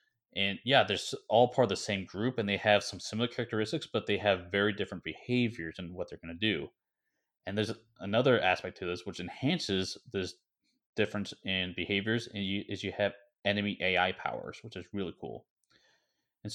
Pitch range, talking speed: 95-115 Hz, 180 wpm